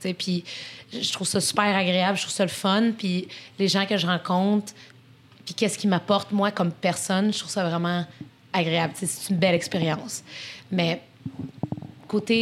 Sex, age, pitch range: female, 30-49, 175-210 Hz